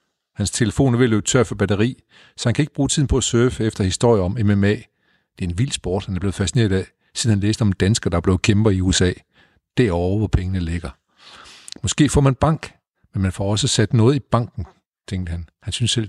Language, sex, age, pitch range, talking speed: Danish, male, 60-79, 95-125 Hz, 240 wpm